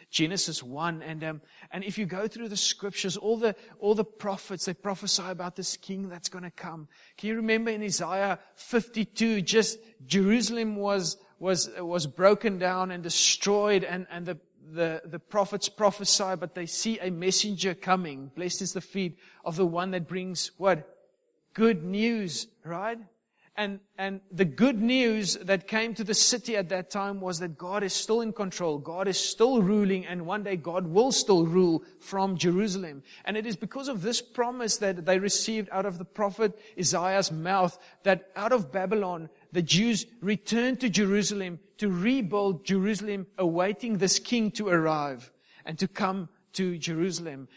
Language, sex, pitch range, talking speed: English, male, 180-210 Hz, 175 wpm